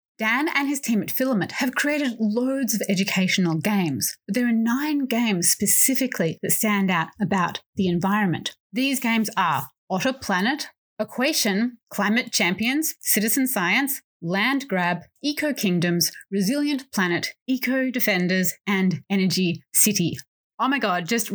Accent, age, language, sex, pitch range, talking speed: Australian, 30-49, English, female, 185-255 Hz, 140 wpm